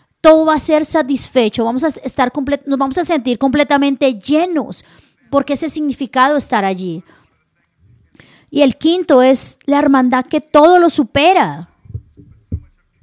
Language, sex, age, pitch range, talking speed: Spanish, female, 30-49, 245-300 Hz, 120 wpm